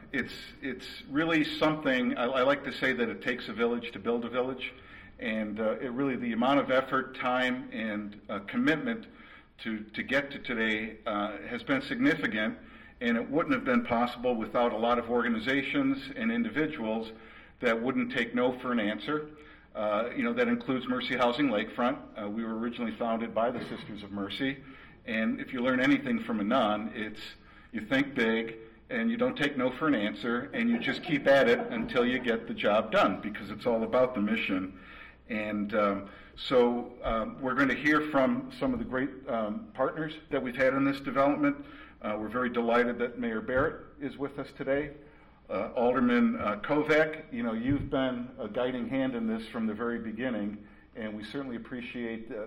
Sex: male